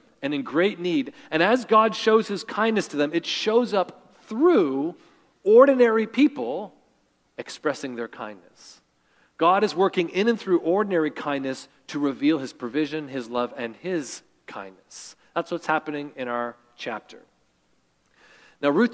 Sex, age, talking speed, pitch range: male, 40-59, 145 wpm, 140-190 Hz